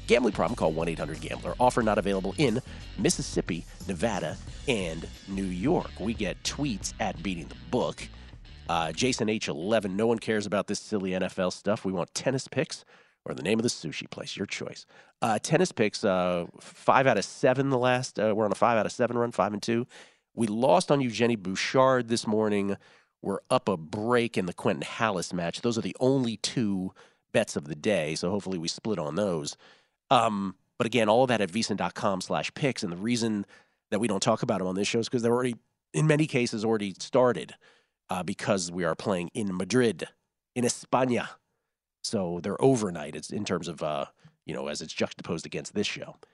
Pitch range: 95-125 Hz